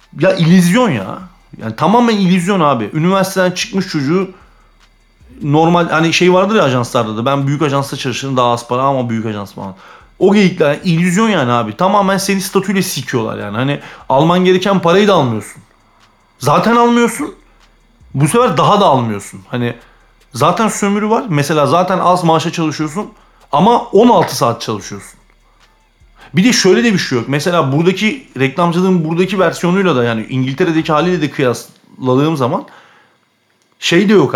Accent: native